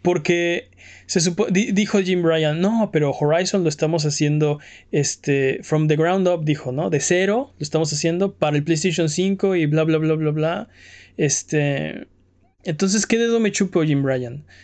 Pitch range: 155-200 Hz